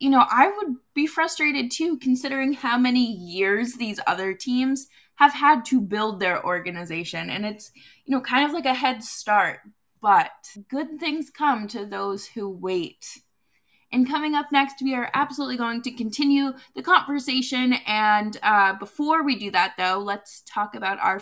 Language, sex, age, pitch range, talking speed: English, female, 20-39, 200-265 Hz, 175 wpm